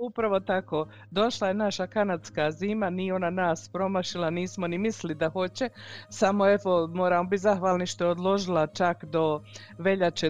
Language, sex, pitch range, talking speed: Croatian, female, 170-195 Hz, 155 wpm